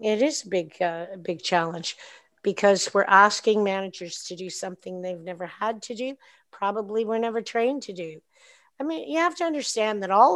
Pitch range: 185-235 Hz